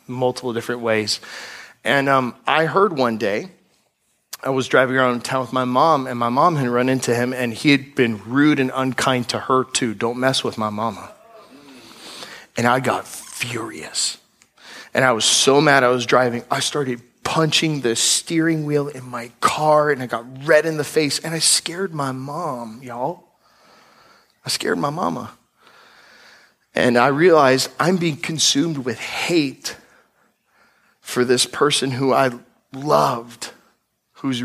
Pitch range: 120-145 Hz